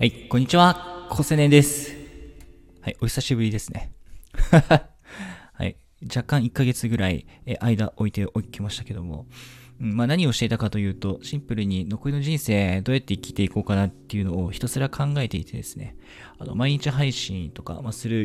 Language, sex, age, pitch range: Japanese, male, 20-39, 100-130 Hz